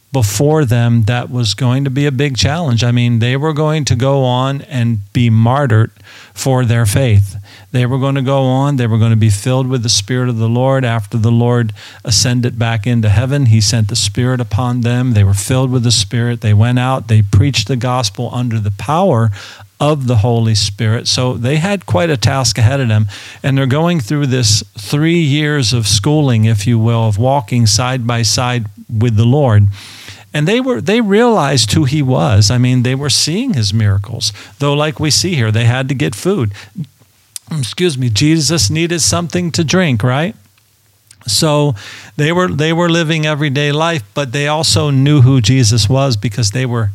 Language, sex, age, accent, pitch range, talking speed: English, male, 50-69, American, 110-135 Hz, 195 wpm